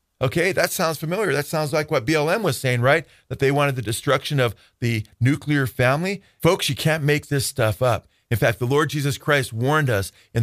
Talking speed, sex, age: 215 wpm, male, 40-59